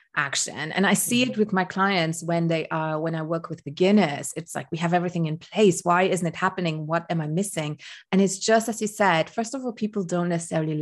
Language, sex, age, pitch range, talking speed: English, female, 30-49, 165-215 Hz, 240 wpm